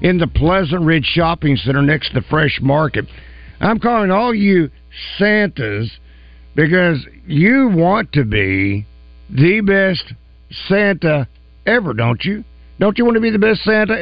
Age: 60-79